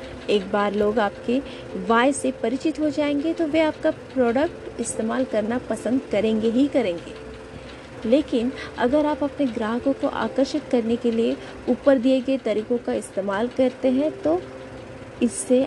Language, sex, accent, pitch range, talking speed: Hindi, female, native, 230-280 Hz, 150 wpm